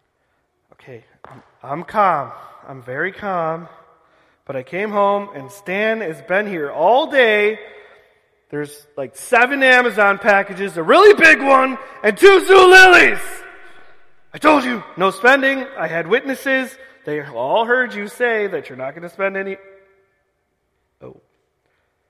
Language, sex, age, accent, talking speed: English, male, 30-49, American, 135 wpm